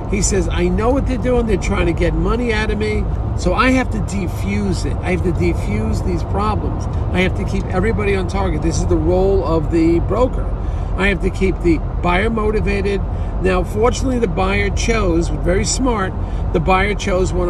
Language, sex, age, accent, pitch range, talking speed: English, male, 50-69, American, 90-105 Hz, 200 wpm